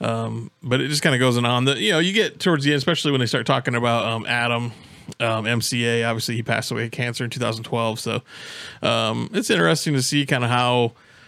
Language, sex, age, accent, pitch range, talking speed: English, male, 20-39, American, 115-130 Hz, 230 wpm